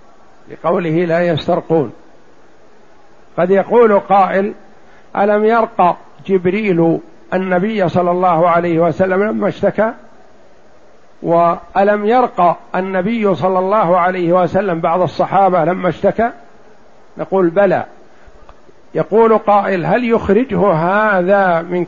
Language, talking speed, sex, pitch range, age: Arabic, 95 wpm, male, 175-205 Hz, 60-79